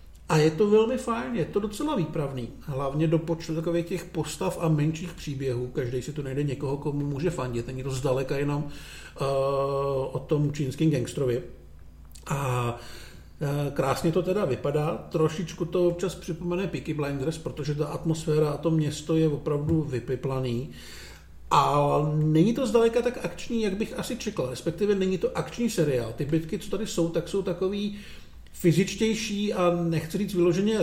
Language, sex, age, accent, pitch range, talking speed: Czech, male, 50-69, native, 140-190 Hz, 165 wpm